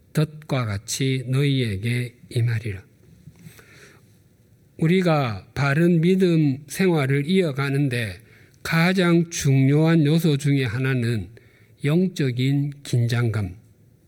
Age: 50-69